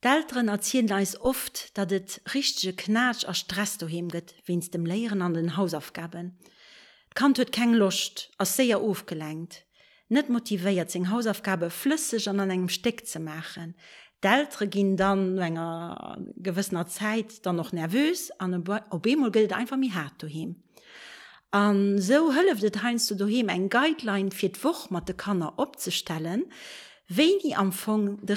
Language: French